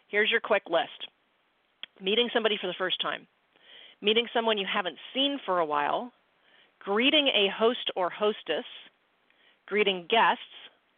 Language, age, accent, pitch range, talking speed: English, 40-59, American, 180-230 Hz, 135 wpm